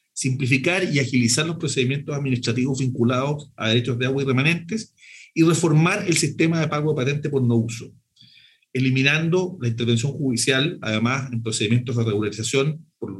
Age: 40-59